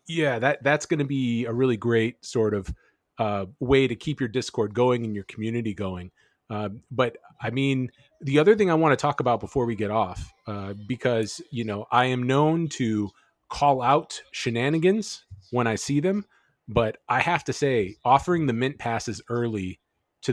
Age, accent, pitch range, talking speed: 30-49, American, 110-140 Hz, 190 wpm